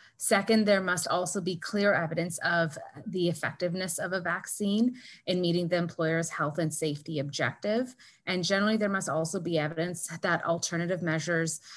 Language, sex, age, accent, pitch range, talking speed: English, female, 30-49, American, 160-185 Hz, 160 wpm